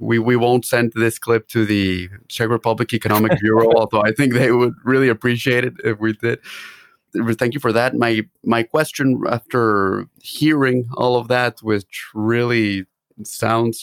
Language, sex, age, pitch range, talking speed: English, male, 30-49, 105-120 Hz, 165 wpm